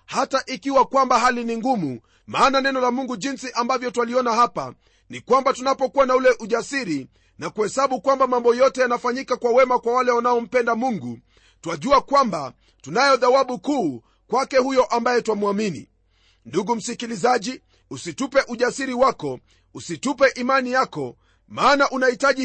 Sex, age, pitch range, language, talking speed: male, 40-59, 205-265 Hz, Swahili, 135 wpm